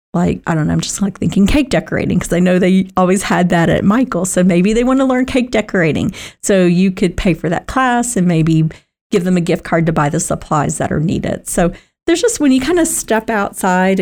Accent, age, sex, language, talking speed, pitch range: American, 40-59, female, English, 245 wpm, 170-205 Hz